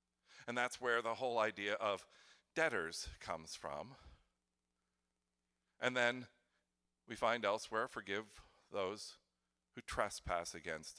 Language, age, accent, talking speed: English, 50-69, American, 110 wpm